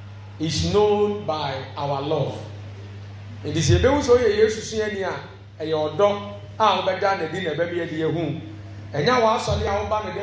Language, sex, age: English, male, 30-49